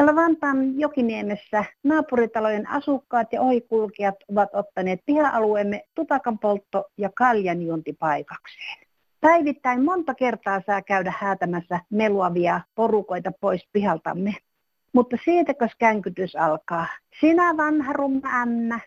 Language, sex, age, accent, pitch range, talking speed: Finnish, female, 50-69, native, 200-275 Hz, 90 wpm